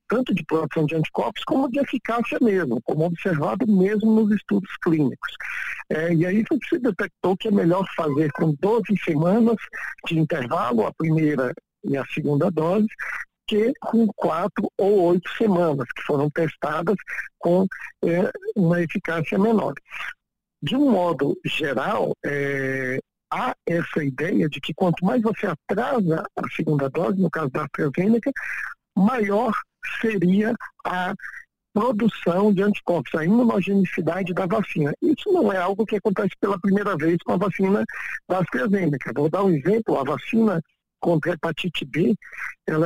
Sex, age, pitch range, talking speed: male, 60-79, 165-220 Hz, 145 wpm